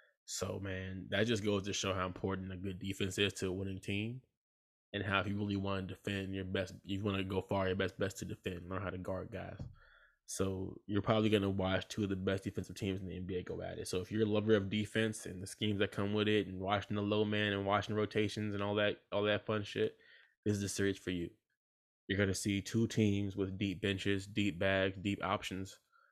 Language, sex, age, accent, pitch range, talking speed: English, male, 20-39, American, 95-105 Hz, 250 wpm